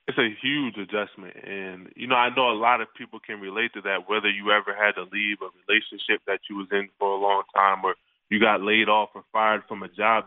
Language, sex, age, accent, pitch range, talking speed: English, male, 20-39, American, 95-105 Hz, 250 wpm